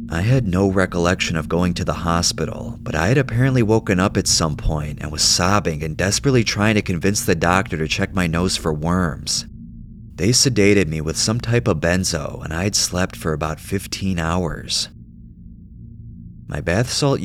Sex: male